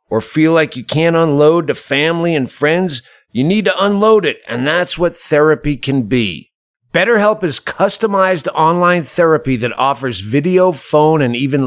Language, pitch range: English, 140-175 Hz